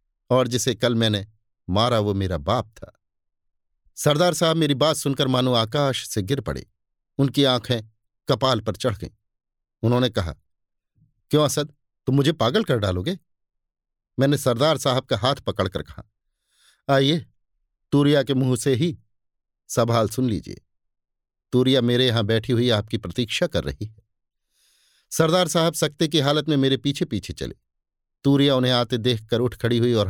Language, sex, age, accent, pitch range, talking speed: Hindi, male, 50-69, native, 105-145 Hz, 160 wpm